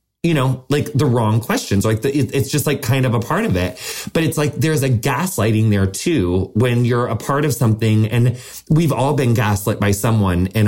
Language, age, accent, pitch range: English, 20-39, American, 105-135 Hz